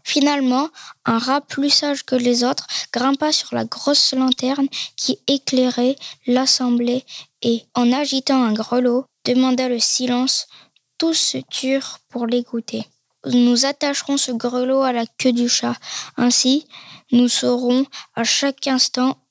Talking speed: 135 wpm